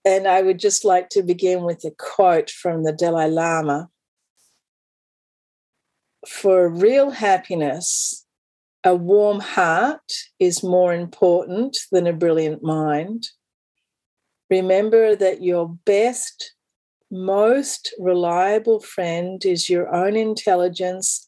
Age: 50-69